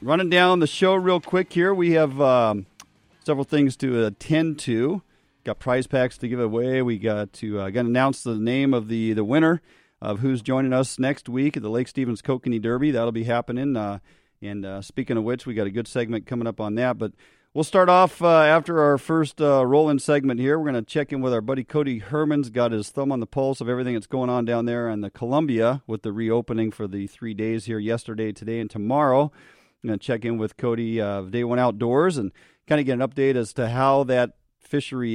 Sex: male